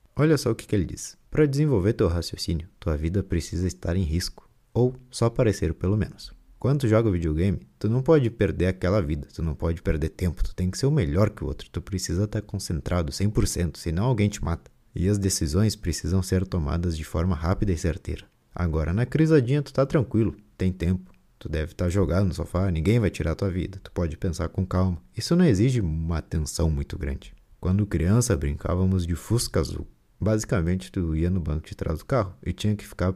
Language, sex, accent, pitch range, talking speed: Portuguese, male, Brazilian, 85-110 Hz, 210 wpm